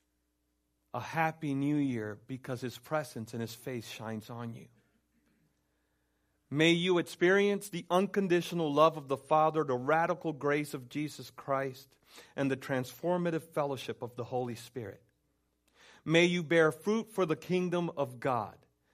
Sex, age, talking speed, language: male, 40-59, 145 wpm, English